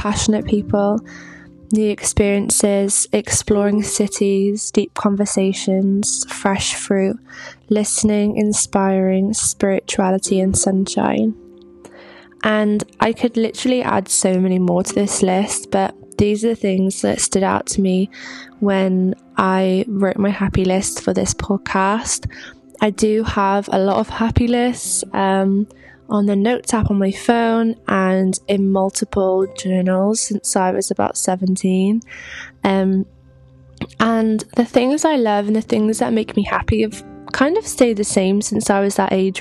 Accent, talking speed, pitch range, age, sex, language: British, 145 wpm, 190-215 Hz, 10-29, female, English